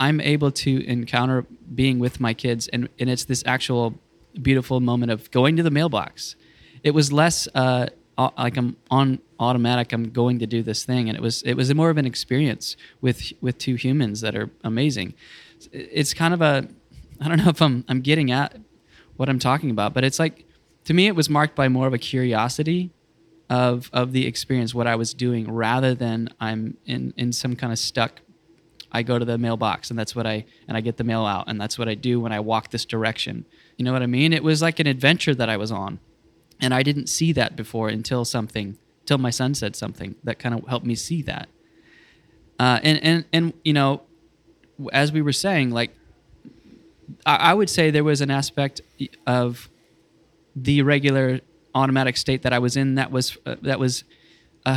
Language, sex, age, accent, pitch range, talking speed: English, male, 20-39, American, 120-145 Hz, 205 wpm